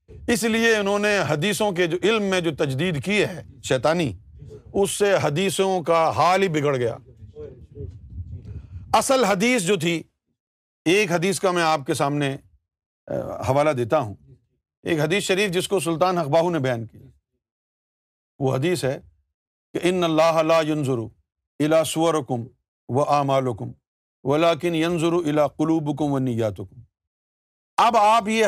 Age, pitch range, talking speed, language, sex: 50-69, 120-190 Hz, 140 wpm, Urdu, male